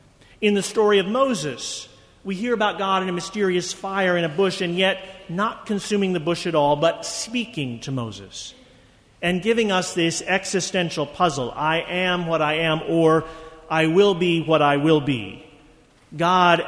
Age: 40-59